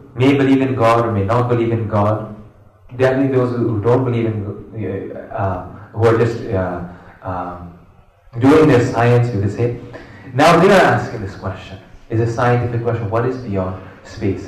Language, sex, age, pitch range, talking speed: Hindi, male, 30-49, 100-135 Hz, 180 wpm